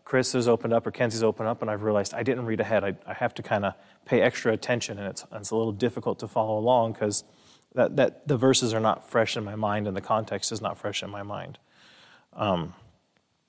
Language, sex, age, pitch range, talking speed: English, male, 30-49, 110-125 Hz, 240 wpm